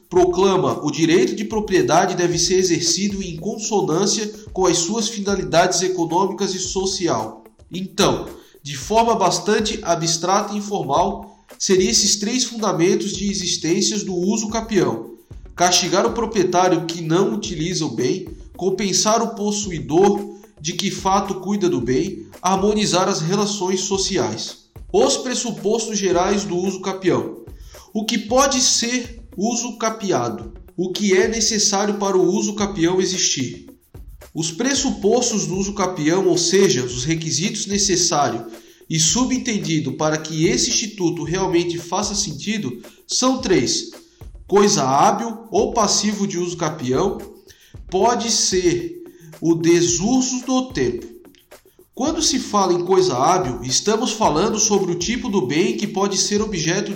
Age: 20-39